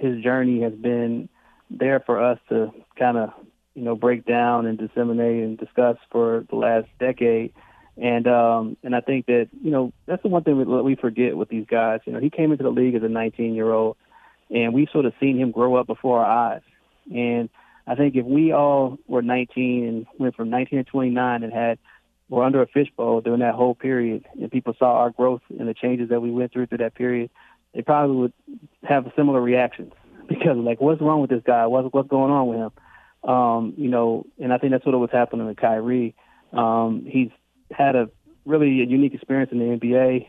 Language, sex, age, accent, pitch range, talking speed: English, male, 30-49, American, 115-130 Hz, 215 wpm